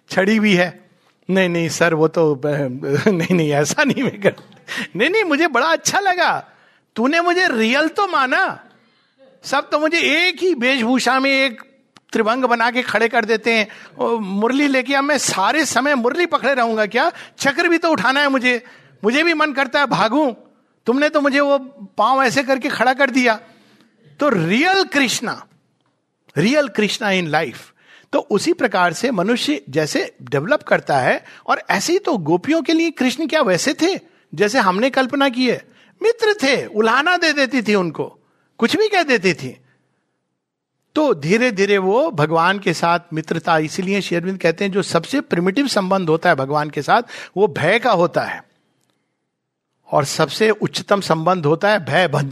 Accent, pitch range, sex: native, 180-285 Hz, male